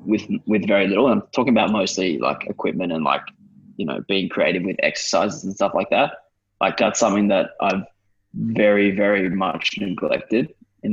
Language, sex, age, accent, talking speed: English, male, 20-39, Australian, 175 wpm